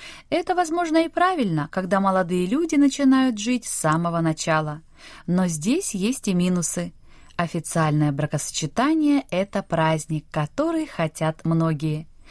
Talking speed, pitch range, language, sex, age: 115 wpm, 160-255 Hz, Russian, female, 20-39